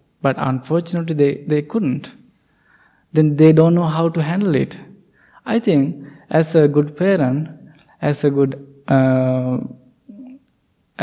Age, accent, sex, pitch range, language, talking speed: 20-39, Indian, male, 135-160 Hz, English, 125 wpm